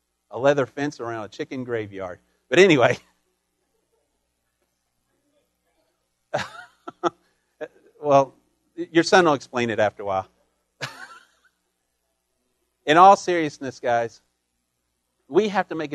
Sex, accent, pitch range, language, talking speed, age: male, American, 145-205 Hz, English, 100 wpm, 50-69